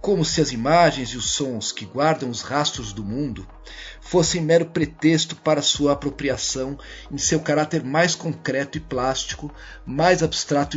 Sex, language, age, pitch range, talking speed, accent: male, Portuguese, 50-69, 130-155 Hz, 155 wpm, Brazilian